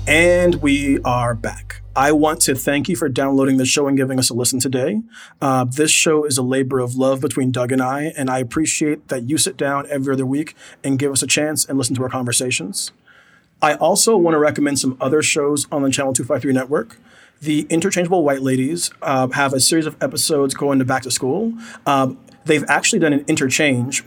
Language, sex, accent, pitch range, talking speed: English, male, American, 130-150 Hz, 210 wpm